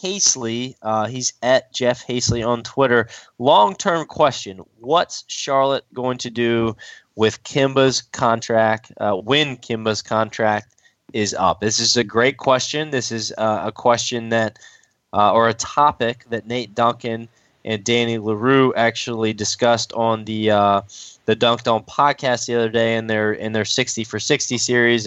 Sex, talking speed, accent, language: male, 155 wpm, American, English